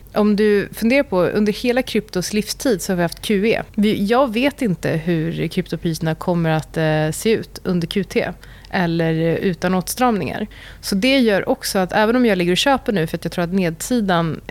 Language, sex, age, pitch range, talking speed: Swedish, female, 30-49, 170-210 Hz, 185 wpm